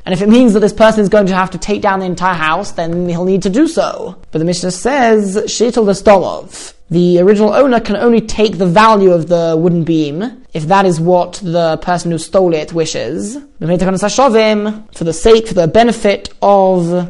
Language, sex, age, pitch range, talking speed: English, male, 20-39, 180-220 Hz, 220 wpm